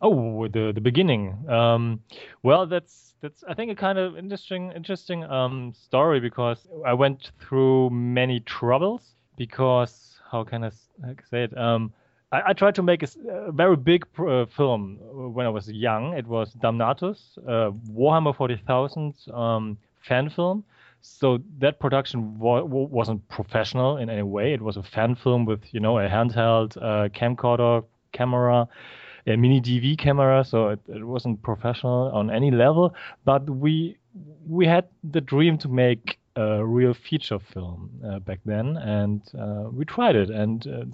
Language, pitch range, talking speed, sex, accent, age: English, 115-150 Hz, 165 wpm, male, German, 30-49